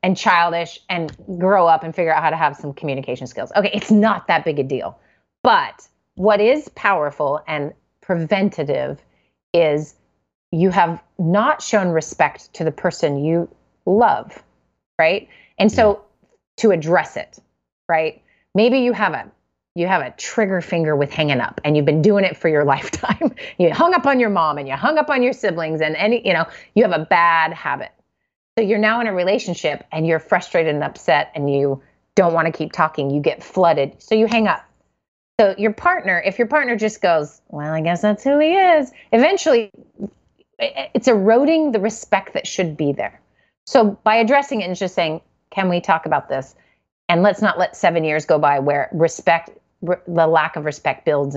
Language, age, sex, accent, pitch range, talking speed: English, 30-49, female, American, 155-215 Hz, 190 wpm